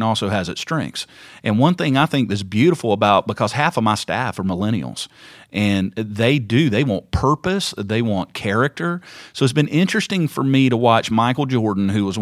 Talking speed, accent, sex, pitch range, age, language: 195 wpm, American, male, 105-135 Hz, 40-59, English